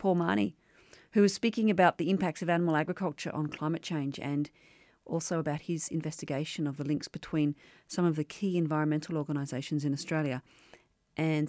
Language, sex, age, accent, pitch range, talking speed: English, female, 40-59, Australian, 155-190 Hz, 165 wpm